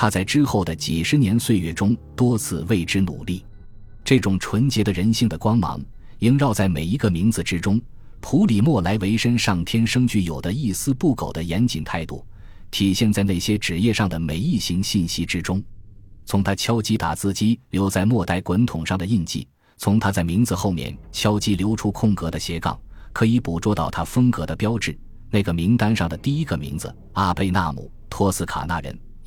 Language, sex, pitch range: Chinese, male, 85-110 Hz